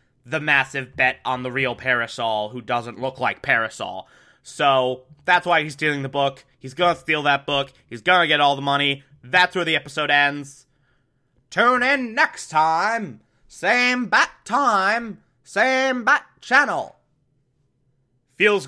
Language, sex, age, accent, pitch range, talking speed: English, male, 20-39, American, 125-170 Hz, 150 wpm